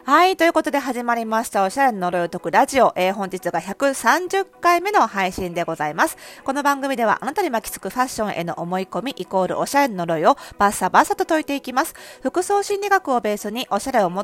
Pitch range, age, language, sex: 185-270 Hz, 40-59, Japanese, female